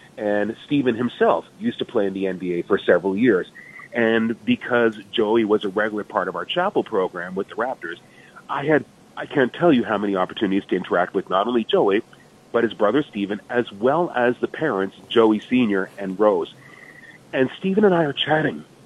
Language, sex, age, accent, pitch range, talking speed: English, male, 30-49, American, 110-145 Hz, 190 wpm